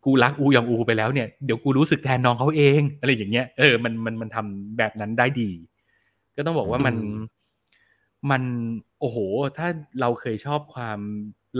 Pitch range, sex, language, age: 105-130 Hz, male, Thai, 20-39